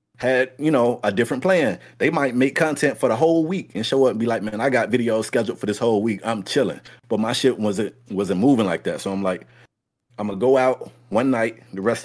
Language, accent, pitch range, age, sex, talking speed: English, American, 110-140 Hz, 30-49, male, 250 wpm